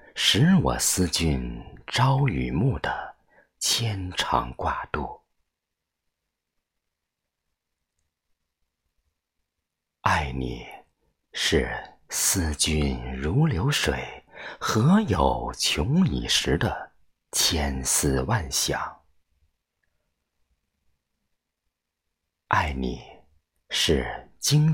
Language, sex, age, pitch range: Chinese, male, 50-69, 70-90 Hz